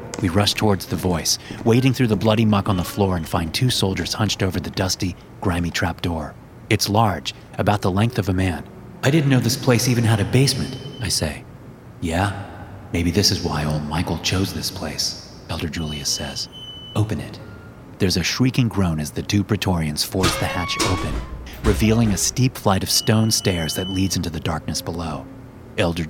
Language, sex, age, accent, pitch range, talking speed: English, male, 30-49, American, 85-110 Hz, 190 wpm